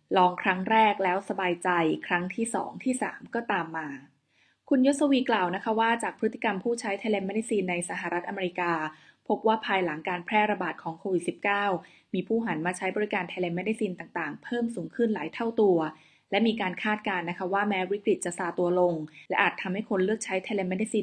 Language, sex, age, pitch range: Thai, female, 20-39, 180-220 Hz